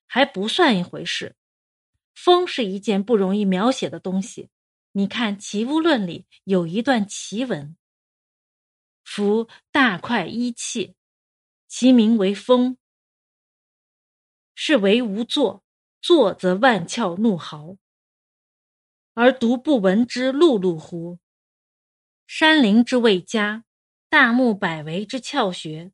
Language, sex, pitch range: Chinese, female, 195-270 Hz